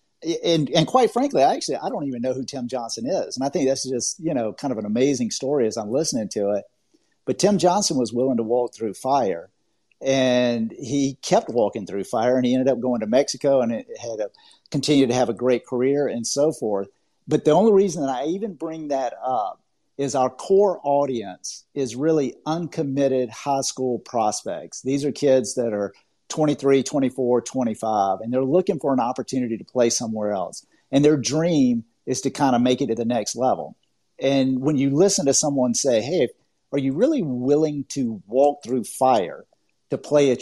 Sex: male